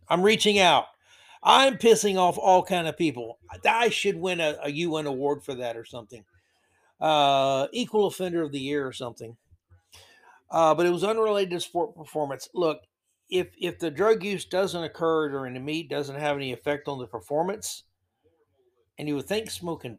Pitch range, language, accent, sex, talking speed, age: 130-170 Hz, English, American, male, 180 wpm, 60-79